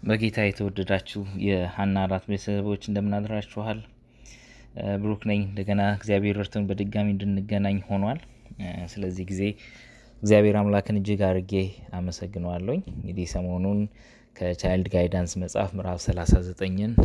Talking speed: 95 wpm